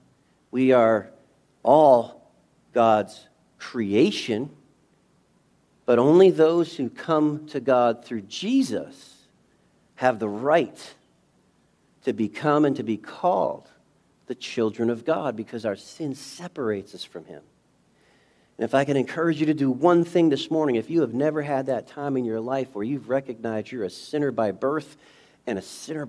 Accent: American